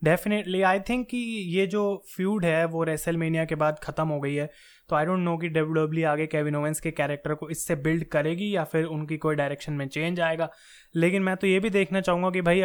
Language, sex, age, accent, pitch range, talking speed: Hindi, male, 20-39, native, 155-180 Hz, 235 wpm